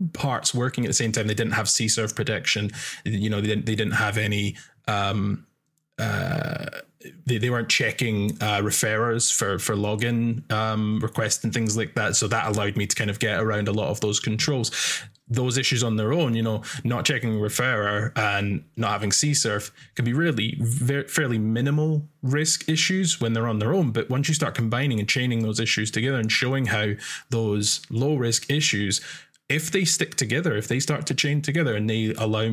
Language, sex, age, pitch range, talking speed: English, male, 20-39, 110-135 Hz, 195 wpm